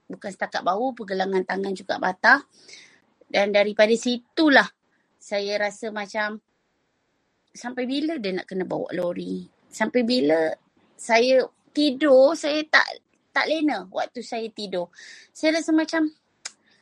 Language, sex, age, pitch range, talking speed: Malay, female, 20-39, 205-300 Hz, 120 wpm